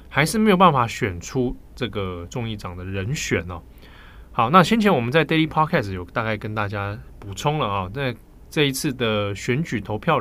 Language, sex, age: Chinese, male, 20-39